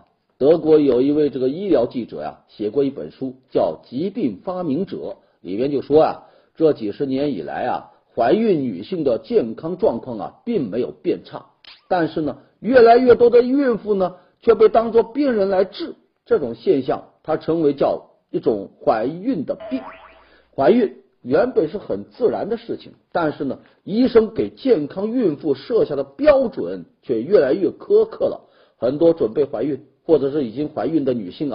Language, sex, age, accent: Chinese, male, 50-69, native